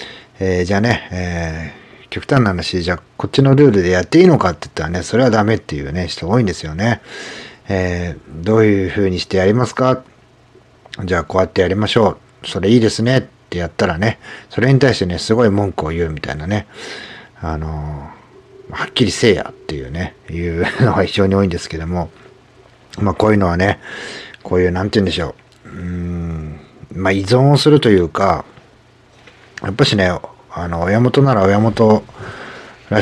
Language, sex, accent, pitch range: Japanese, male, native, 90-115 Hz